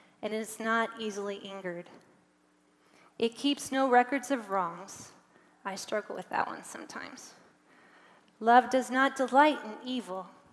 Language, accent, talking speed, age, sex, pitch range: English, American, 135 wpm, 30-49, female, 200-255 Hz